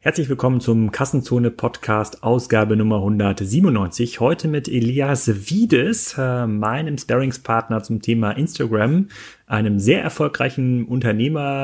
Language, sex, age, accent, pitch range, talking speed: German, male, 30-49, German, 115-145 Hz, 105 wpm